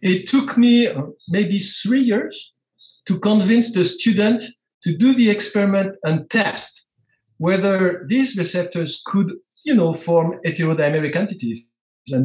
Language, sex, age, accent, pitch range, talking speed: English, male, 60-79, French, 145-200 Hz, 125 wpm